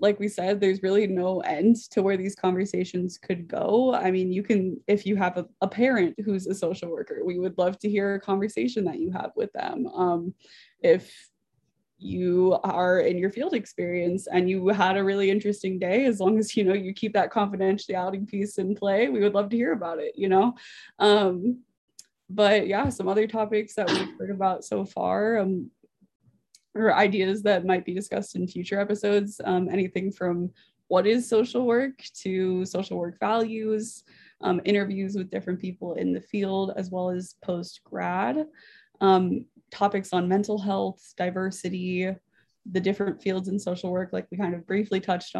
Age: 20-39